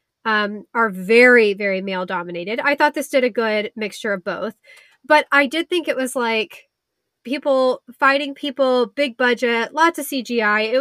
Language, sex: English, female